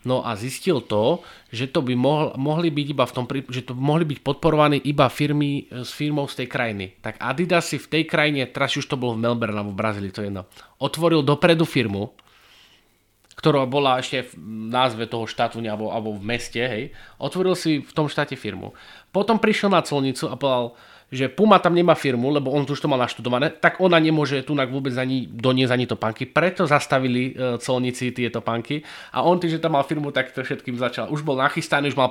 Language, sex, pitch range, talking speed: English, male, 115-145 Hz, 210 wpm